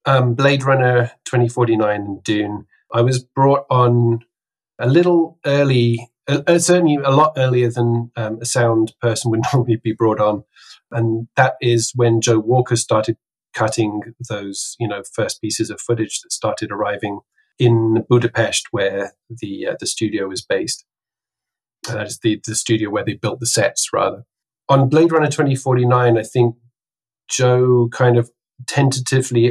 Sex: male